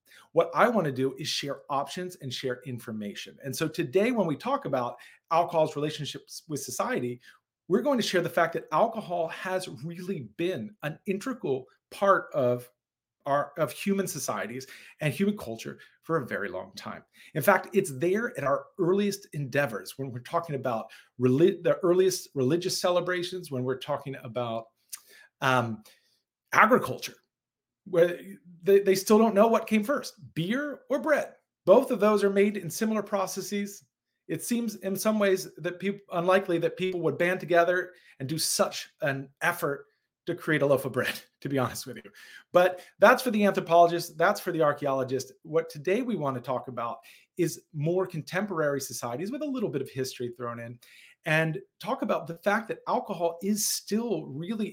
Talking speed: 175 wpm